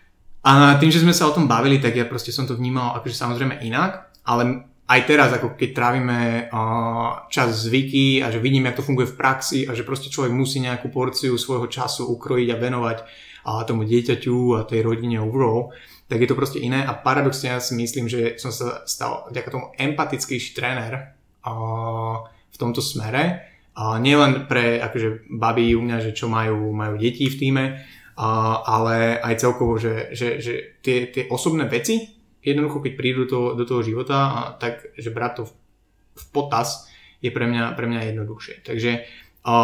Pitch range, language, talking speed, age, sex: 115-135 Hz, Slovak, 185 wpm, 20-39, male